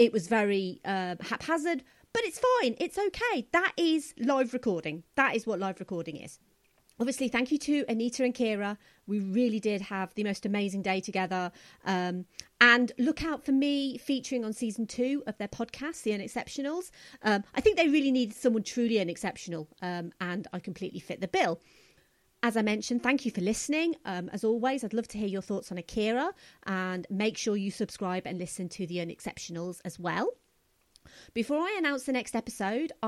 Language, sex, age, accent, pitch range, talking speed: English, female, 30-49, British, 190-260 Hz, 185 wpm